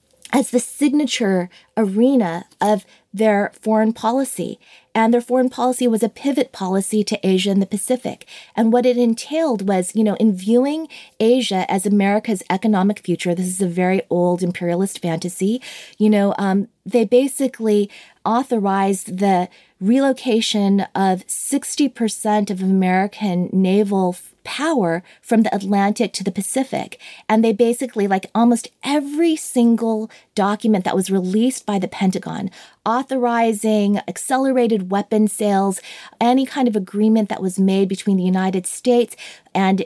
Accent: American